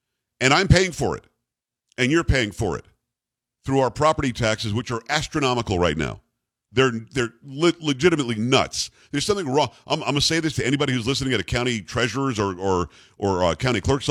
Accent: American